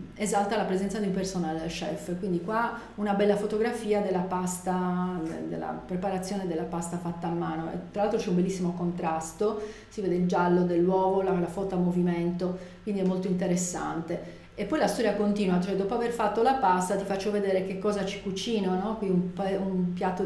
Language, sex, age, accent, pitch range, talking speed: Italian, female, 40-59, native, 175-200 Hz, 185 wpm